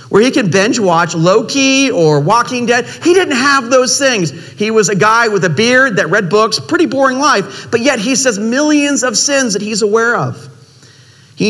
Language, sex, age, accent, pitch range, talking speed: English, male, 40-59, American, 140-220 Hz, 205 wpm